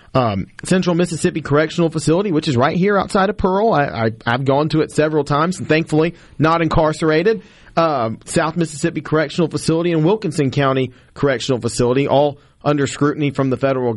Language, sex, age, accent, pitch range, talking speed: English, male, 40-59, American, 135-165 Hz, 165 wpm